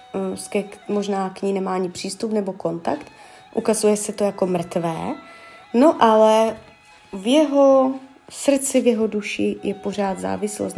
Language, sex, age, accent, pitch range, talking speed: Czech, female, 20-39, native, 185-245 Hz, 135 wpm